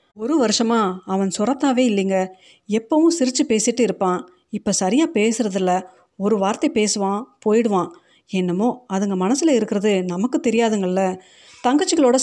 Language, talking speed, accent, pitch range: Tamil, 115 wpm, native, 190-240 Hz